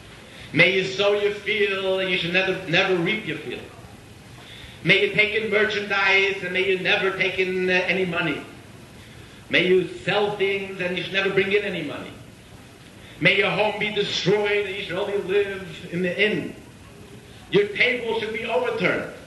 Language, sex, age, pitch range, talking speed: English, male, 50-69, 155-205 Hz, 180 wpm